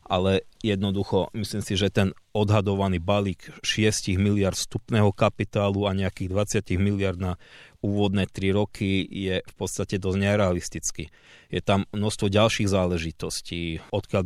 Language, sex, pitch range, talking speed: Slovak, male, 95-105 Hz, 130 wpm